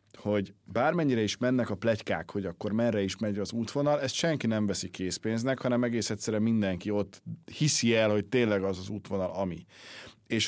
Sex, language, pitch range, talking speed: male, Hungarian, 95-115 Hz, 185 wpm